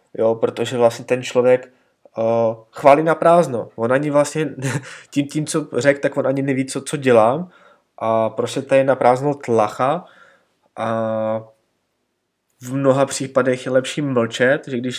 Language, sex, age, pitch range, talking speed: Czech, male, 20-39, 115-135 Hz, 155 wpm